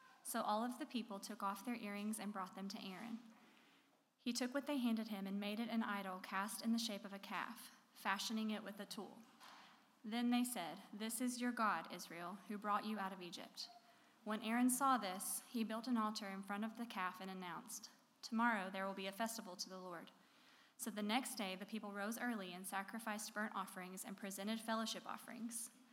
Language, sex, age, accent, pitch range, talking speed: English, female, 20-39, American, 195-235 Hz, 210 wpm